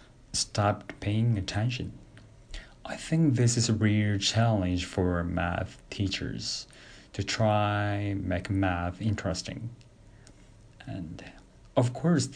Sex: male